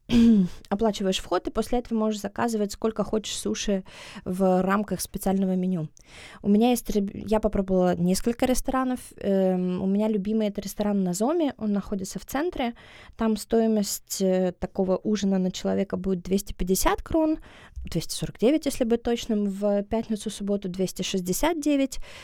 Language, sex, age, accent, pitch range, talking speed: Russian, female, 20-39, native, 190-220 Hz, 145 wpm